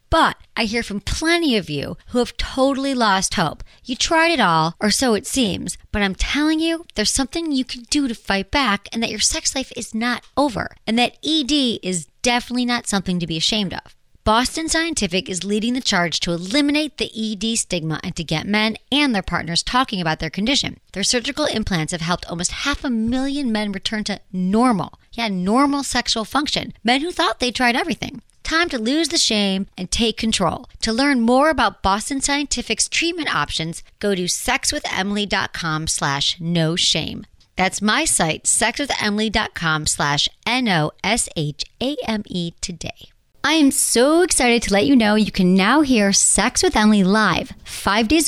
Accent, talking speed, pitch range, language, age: American, 180 wpm, 190-265 Hz, English, 40-59